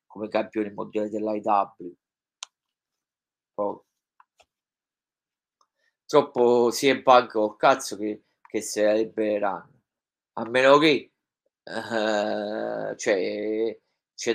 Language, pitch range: Italian, 115-130 Hz